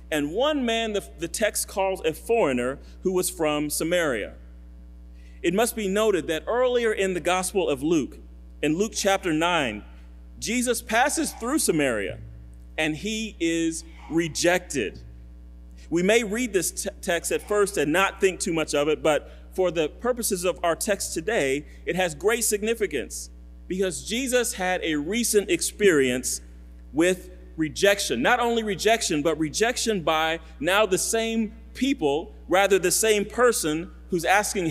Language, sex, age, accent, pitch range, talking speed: English, male, 40-59, American, 130-210 Hz, 150 wpm